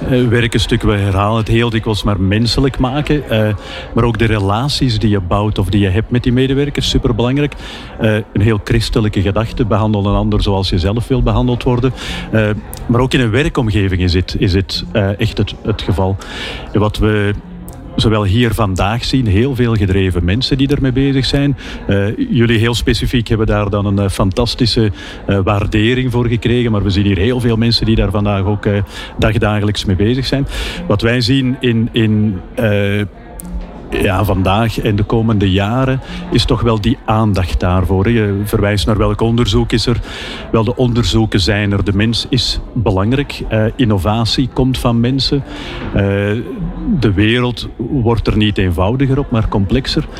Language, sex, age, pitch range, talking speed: Dutch, male, 50-69, 105-125 Hz, 170 wpm